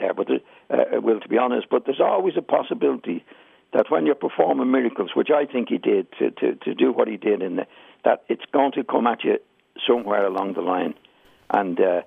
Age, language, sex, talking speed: 60-79, English, male, 215 wpm